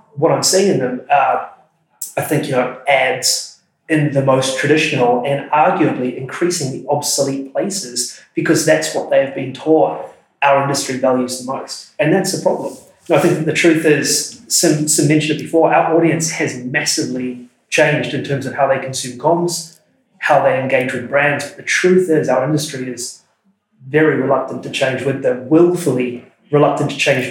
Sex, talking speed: male, 175 wpm